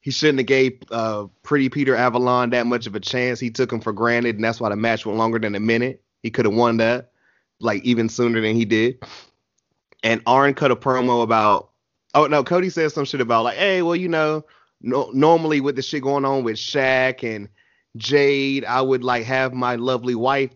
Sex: male